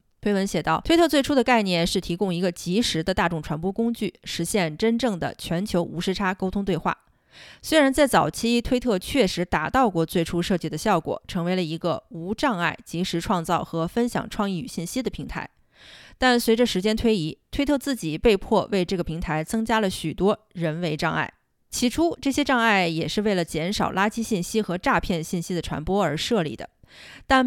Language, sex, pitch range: Chinese, female, 170-225 Hz